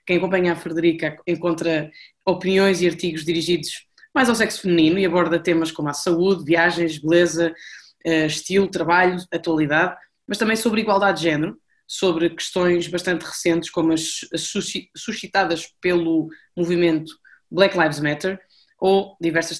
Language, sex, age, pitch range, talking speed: Portuguese, female, 20-39, 160-185 Hz, 135 wpm